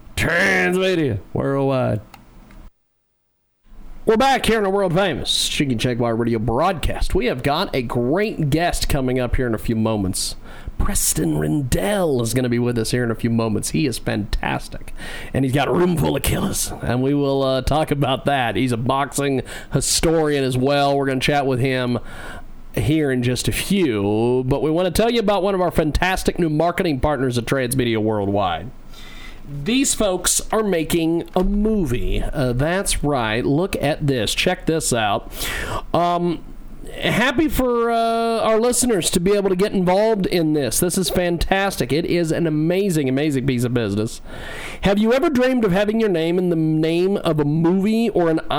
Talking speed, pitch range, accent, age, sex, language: 180 wpm, 125-185 Hz, American, 40-59, male, English